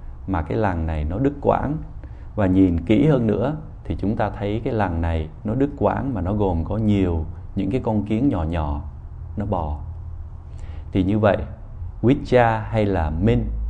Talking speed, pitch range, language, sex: 185 wpm, 85-105 Hz, Vietnamese, male